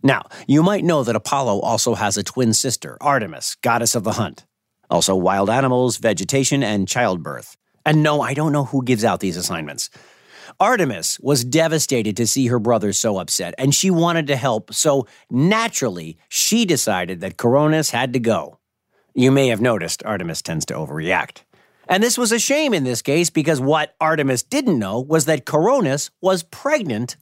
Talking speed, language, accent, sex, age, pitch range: 180 wpm, English, American, male, 50-69, 120-185 Hz